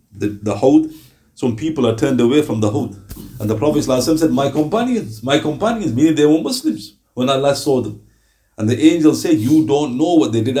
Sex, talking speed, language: male, 215 wpm, English